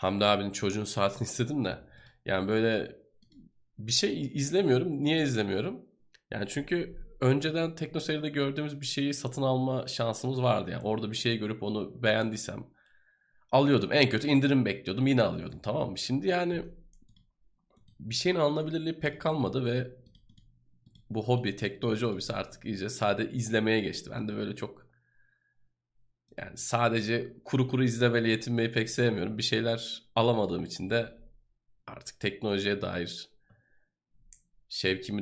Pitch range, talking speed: 100-125 Hz, 135 wpm